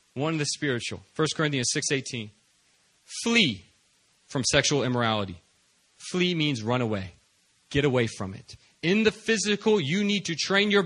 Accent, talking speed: American, 150 wpm